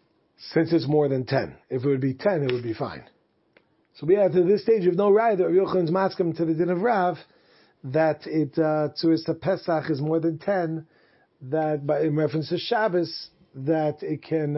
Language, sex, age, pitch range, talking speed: English, male, 40-59, 150-180 Hz, 200 wpm